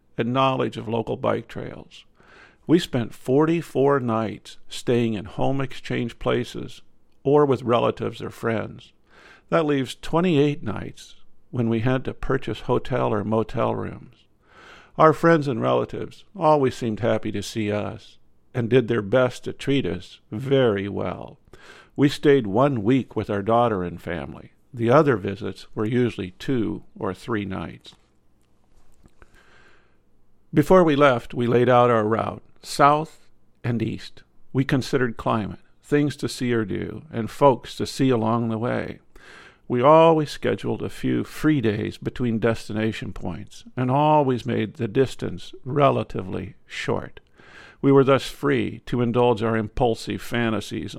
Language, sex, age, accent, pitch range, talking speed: English, male, 50-69, American, 110-135 Hz, 145 wpm